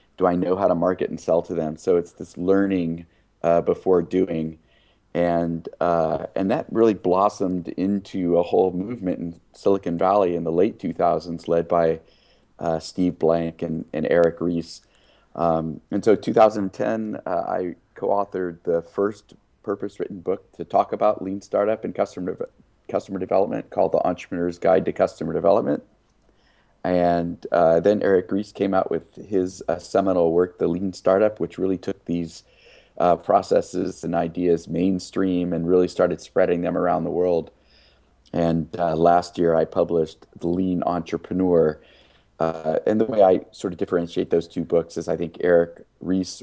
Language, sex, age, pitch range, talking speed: English, male, 30-49, 85-95 Hz, 165 wpm